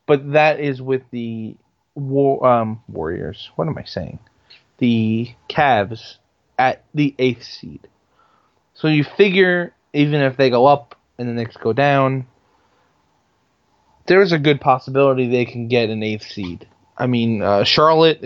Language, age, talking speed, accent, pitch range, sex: English, 20-39, 150 wpm, American, 110-135 Hz, male